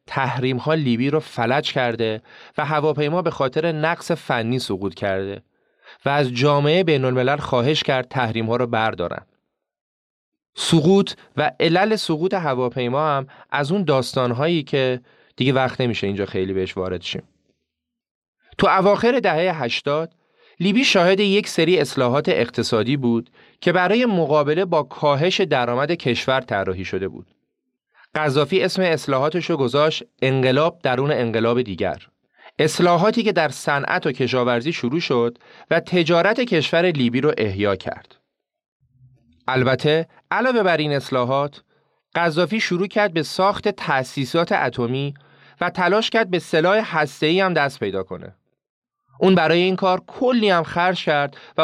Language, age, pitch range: Persian, 30-49, 125-175 Hz